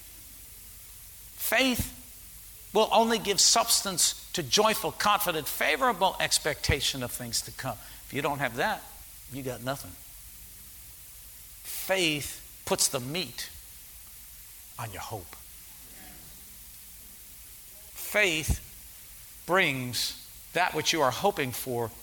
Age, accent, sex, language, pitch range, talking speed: 60-79, American, male, English, 115-180 Hz, 100 wpm